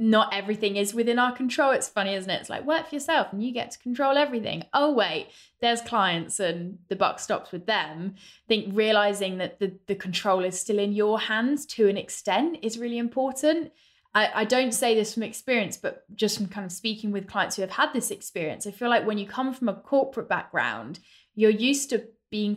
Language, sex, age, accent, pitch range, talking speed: English, female, 10-29, British, 195-245 Hz, 220 wpm